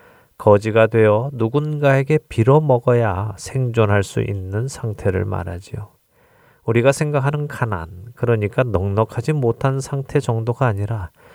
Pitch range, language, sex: 100-135 Hz, Korean, male